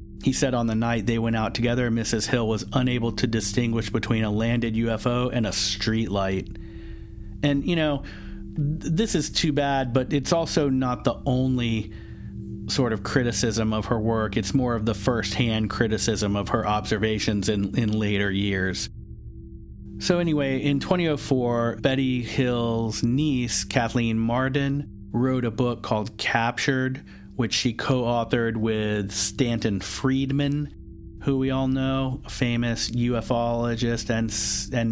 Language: English